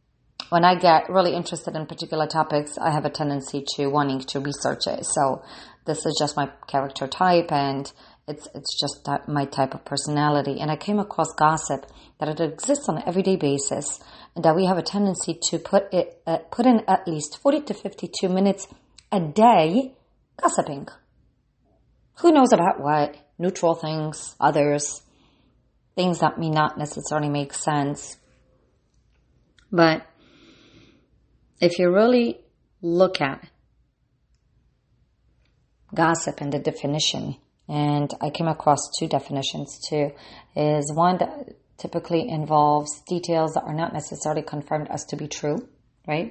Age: 30-49